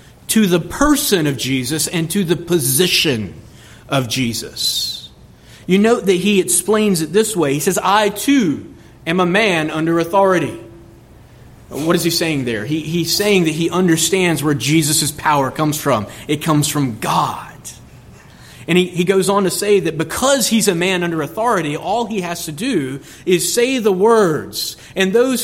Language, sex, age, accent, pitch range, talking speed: English, male, 30-49, American, 160-210 Hz, 170 wpm